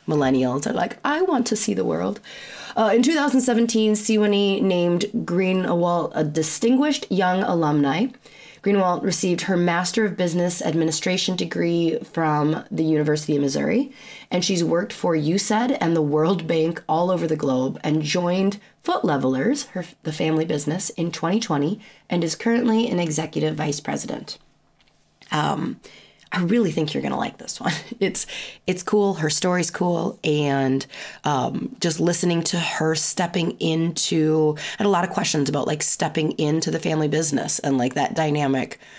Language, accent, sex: English, American, female